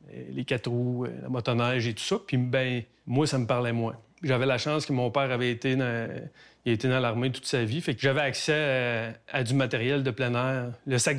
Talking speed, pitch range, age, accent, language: 235 wpm, 120-140 Hz, 30-49, Canadian, French